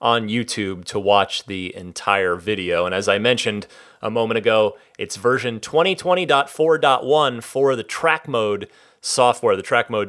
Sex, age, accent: male, 30-49, American